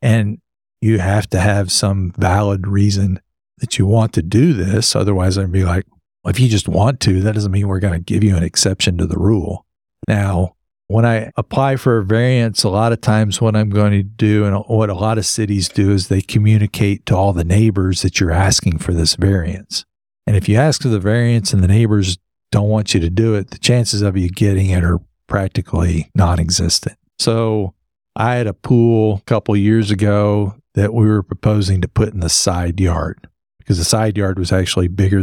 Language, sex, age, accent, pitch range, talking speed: English, male, 50-69, American, 95-110 Hz, 210 wpm